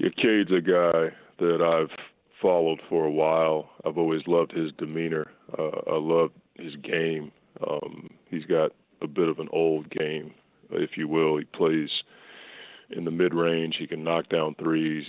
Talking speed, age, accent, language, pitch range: 165 wpm, 30-49, American, English, 80-85 Hz